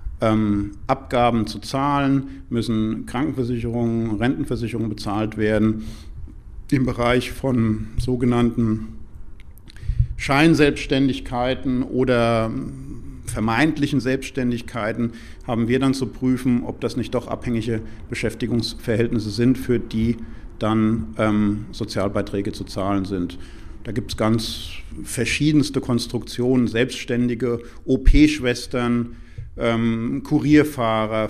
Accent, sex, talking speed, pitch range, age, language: German, male, 90 wpm, 105-120 Hz, 50-69, German